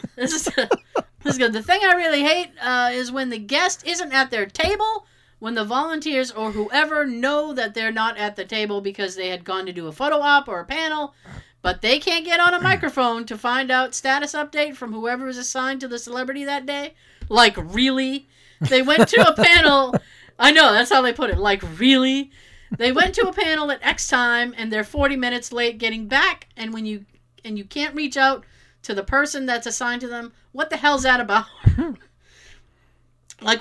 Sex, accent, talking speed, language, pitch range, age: female, American, 210 wpm, English, 215-290 Hz, 40-59